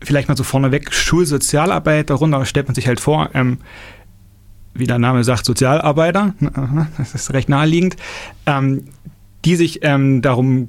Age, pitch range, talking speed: 30-49, 125-145 Hz, 145 wpm